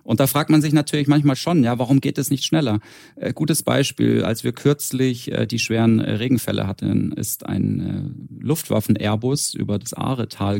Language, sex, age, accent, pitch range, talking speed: German, male, 40-59, German, 105-135 Hz, 165 wpm